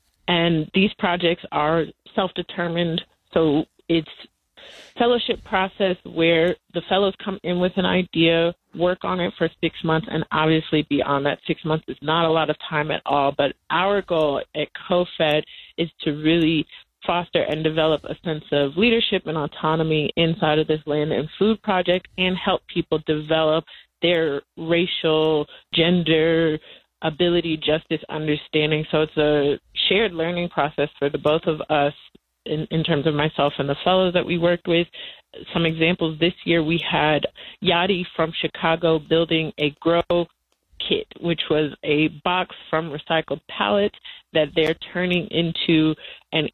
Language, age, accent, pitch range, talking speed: English, 30-49, American, 155-175 Hz, 155 wpm